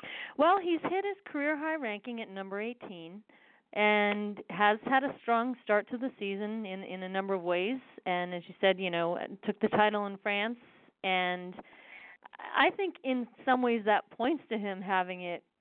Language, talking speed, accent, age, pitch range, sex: English, 185 wpm, American, 40-59, 190-235 Hz, female